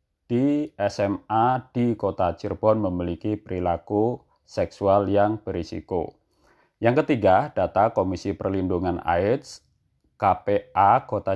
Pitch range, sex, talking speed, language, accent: 95-115 Hz, male, 95 wpm, Indonesian, native